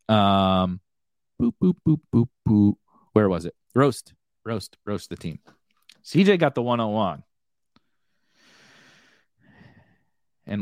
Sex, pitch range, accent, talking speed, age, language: male, 110-160 Hz, American, 105 wpm, 30-49, English